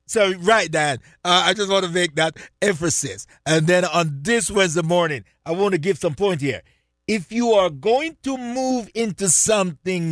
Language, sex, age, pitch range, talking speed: English, male, 50-69, 135-225 Hz, 190 wpm